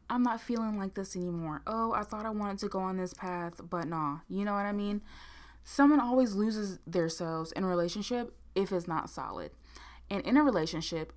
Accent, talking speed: American, 205 wpm